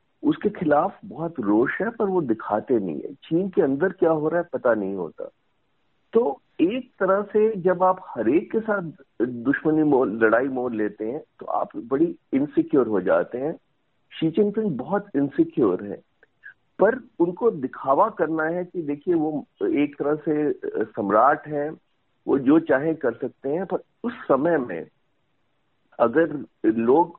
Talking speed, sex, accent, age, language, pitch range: 160 wpm, male, native, 50-69, Hindi, 150-215 Hz